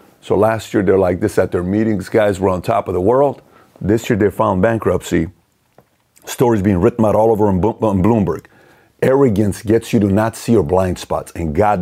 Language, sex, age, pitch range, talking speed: English, male, 40-59, 115-150 Hz, 205 wpm